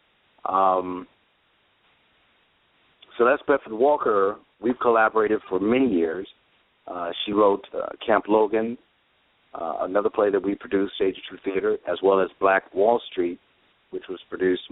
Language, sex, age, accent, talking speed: English, male, 50-69, American, 145 wpm